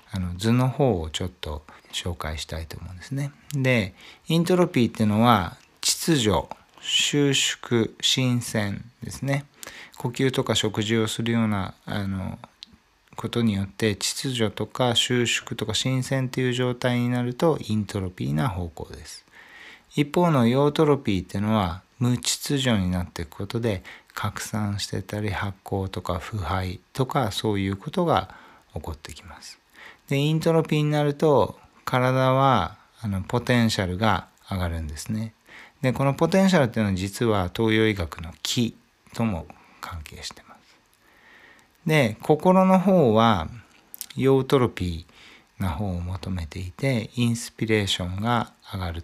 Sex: male